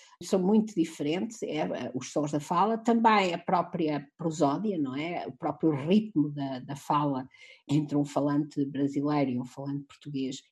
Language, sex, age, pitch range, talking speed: Portuguese, female, 50-69, 145-190 Hz, 160 wpm